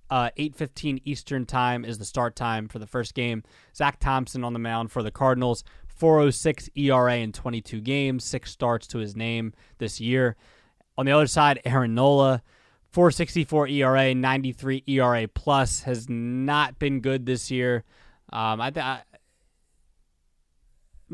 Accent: American